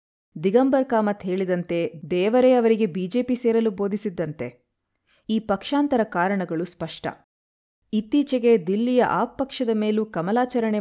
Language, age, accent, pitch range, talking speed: Kannada, 20-39, native, 175-230 Hz, 100 wpm